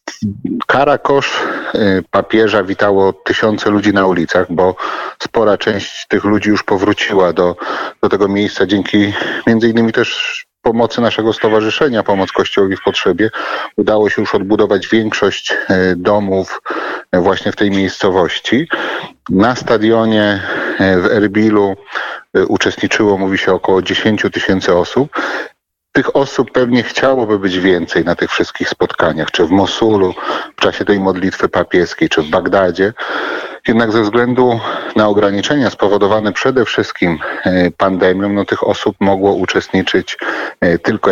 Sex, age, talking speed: male, 30-49, 125 wpm